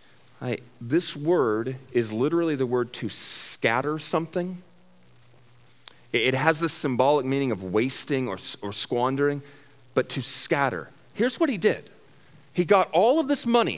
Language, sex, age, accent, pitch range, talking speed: English, male, 40-59, American, 110-145 Hz, 145 wpm